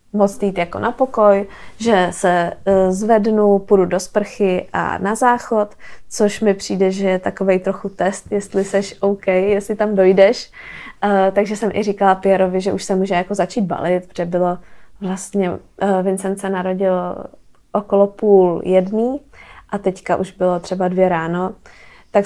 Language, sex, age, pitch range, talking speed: Czech, female, 20-39, 185-210 Hz, 150 wpm